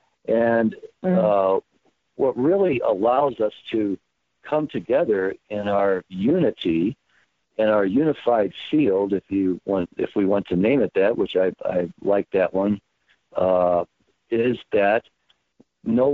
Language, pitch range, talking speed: English, 95-130 Hz, 135 wpm